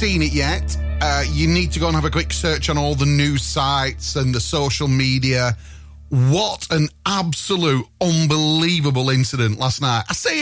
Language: English